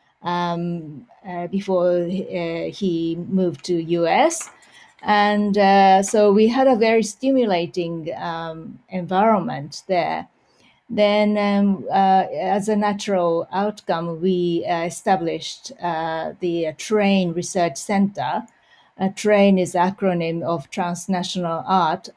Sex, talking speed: female, 110 wpm